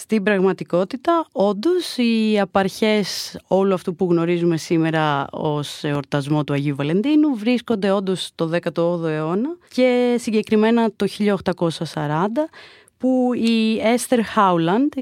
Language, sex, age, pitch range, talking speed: Greek, female, 30-49, 155-235 Hz, 110 wpm